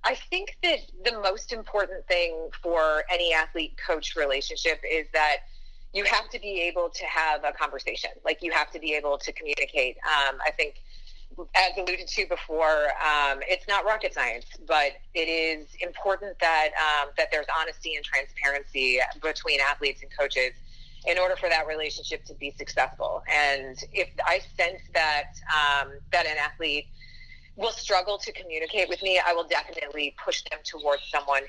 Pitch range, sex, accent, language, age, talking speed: 140-190 Hz, female, American, English, 30-49, 170 wpm